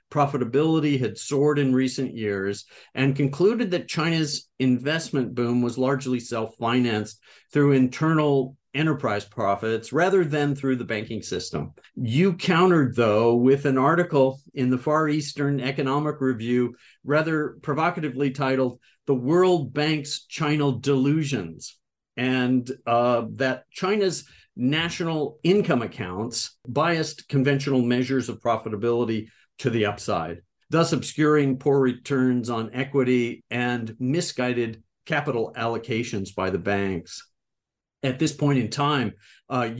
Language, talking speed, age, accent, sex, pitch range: English, 120 wpm, 50-69, American, male, 120-150 Hz